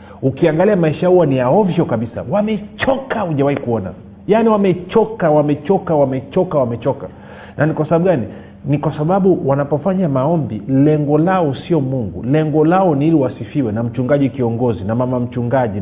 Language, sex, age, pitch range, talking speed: Swahili, male, 40-59, 115-165 Hz, 150 wpm